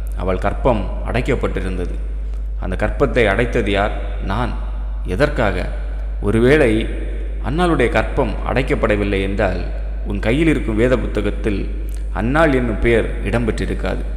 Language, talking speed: Tamil, 95 wpm